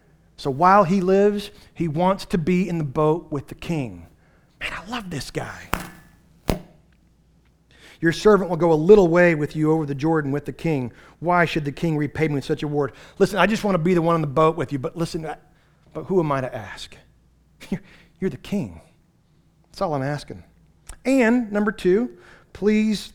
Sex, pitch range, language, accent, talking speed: male, 150-190 Hz, English, American, 195 wpm